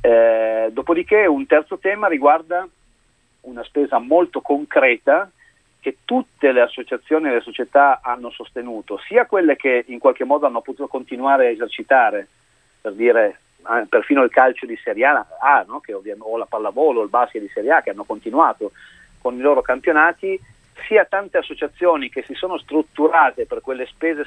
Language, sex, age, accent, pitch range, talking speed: Italian, male, 40-59, native, 120-170 Hz, 170 wpm